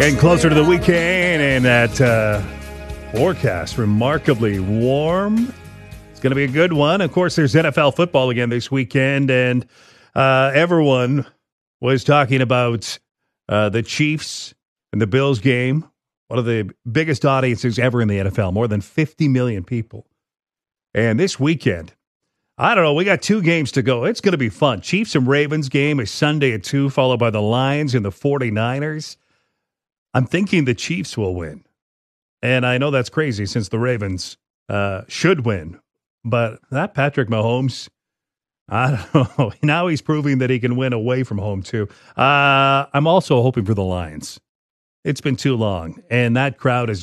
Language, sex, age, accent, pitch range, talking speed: English, male, 40-59, American, 115-150 Hz, 170 wpm